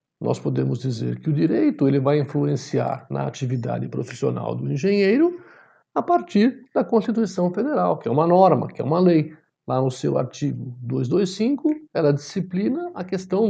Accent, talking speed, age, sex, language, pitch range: Brazilian, 155 wpm, 60-79, male, Portuguese, 135-200 Hz